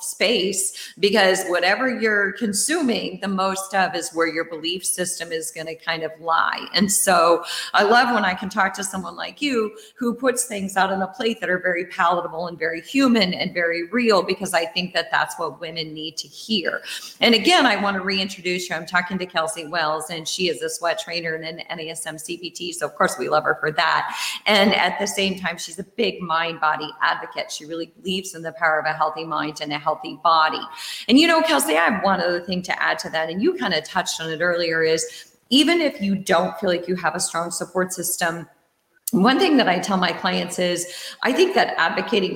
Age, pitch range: 40-59, 165-205 Hz